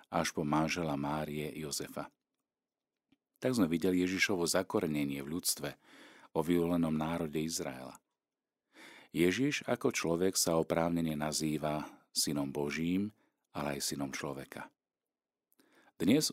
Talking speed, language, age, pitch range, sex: 105 wpm, Slovak, 50-69, 75-95 Hz, male